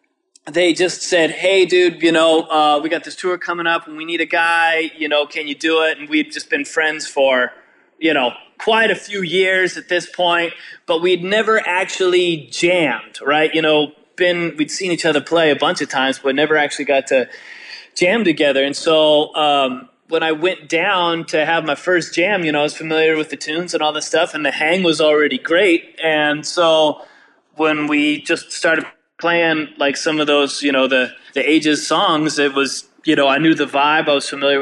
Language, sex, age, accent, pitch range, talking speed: English, male, 20-39, American, 150-180 Hz, 215 wpm